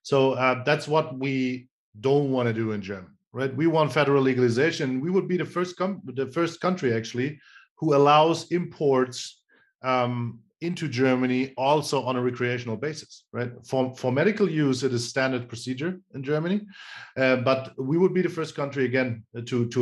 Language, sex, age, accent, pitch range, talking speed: English, male, 40-59, German, 125-155 Hz, 175 wpm